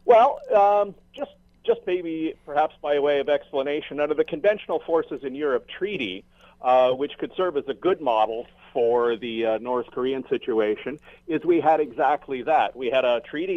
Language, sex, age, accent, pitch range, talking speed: English, male, 50-69, American, 125-165 Hz, 175 wpm